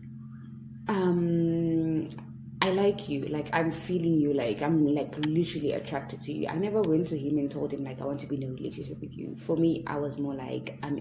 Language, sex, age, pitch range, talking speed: English, female, 20-39, 135-155 Hz, 220 wpm